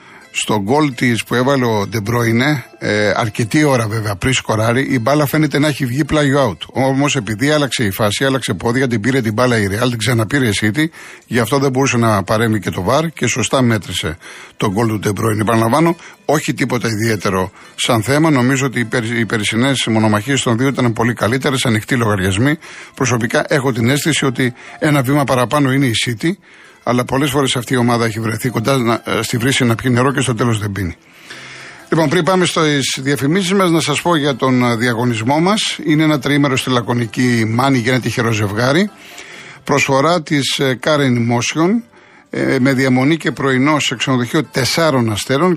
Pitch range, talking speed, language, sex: 115-145 Hz, 180 wpm, Greek, male